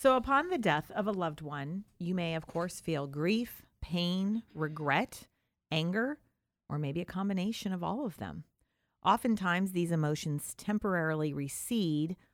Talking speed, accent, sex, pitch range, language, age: 145 wpm, American, female, 145-205 Hz, English, 40-59